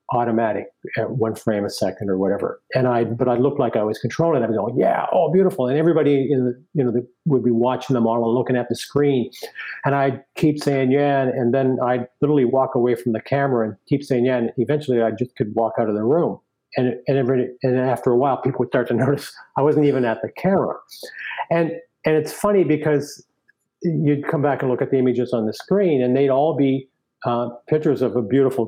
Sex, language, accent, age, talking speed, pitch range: male, English, American, 50-69, 230 wpm, 120-140 Hz